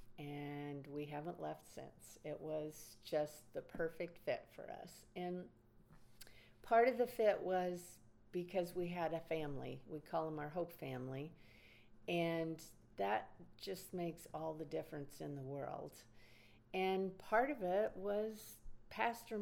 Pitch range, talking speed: 145-205 Hz, 140 wpm